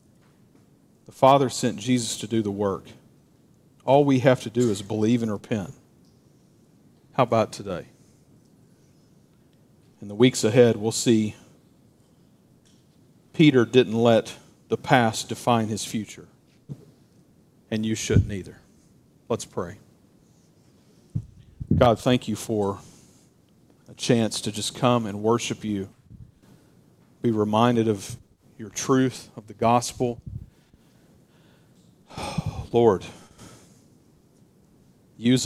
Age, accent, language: 40-59, American, English